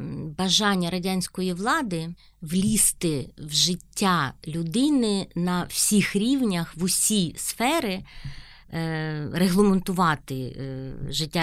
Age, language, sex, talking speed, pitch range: 30-49, Ukrainian, female, 80 wpm, 160-195 Hz